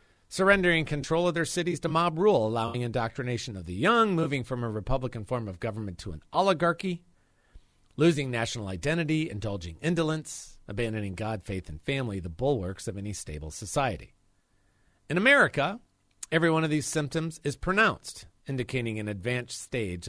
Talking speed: 155 wpm